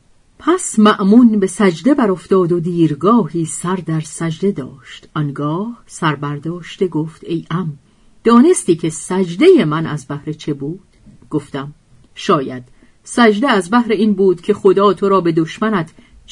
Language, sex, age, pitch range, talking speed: Persian, female, 40-59, 155-215 Hz, 140 wpm